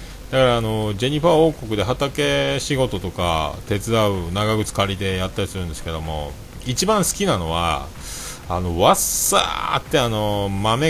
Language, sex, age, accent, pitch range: Japanese, male, 40-59, native, 85-120 Hz